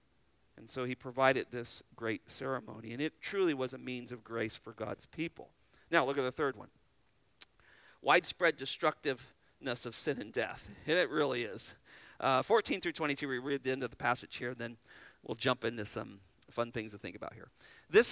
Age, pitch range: 40-59, 130-175 Hz